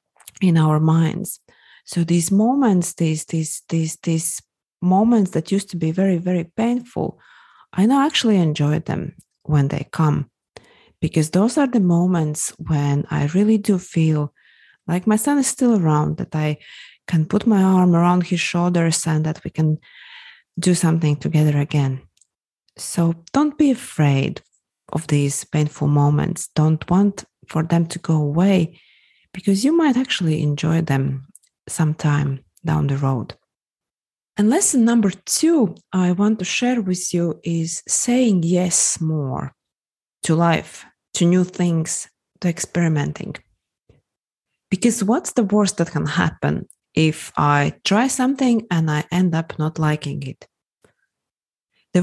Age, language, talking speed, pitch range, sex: 30-49, English, 145 wpm, 155-205 Hz, female